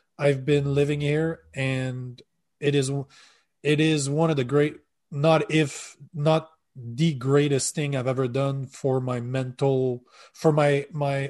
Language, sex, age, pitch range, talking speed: English, male, 20-39, 135-160 Hz, 150 wpm